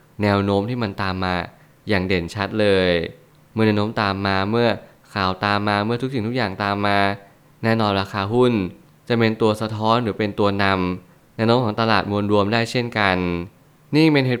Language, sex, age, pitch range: Thai, male, 20-39, 100-120 Hz